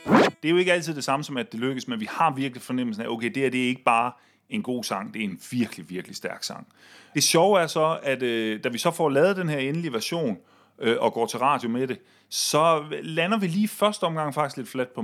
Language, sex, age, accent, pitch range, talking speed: Danish, male, 30-49, native, 120-170 Hz, 265 wpm